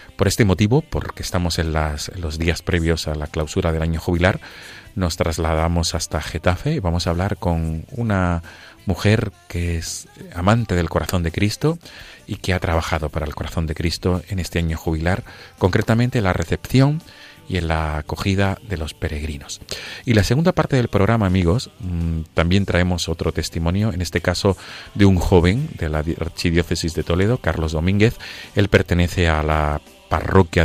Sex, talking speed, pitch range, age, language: male, 170 wpm, 85-100 Hz, 40-59, Spanish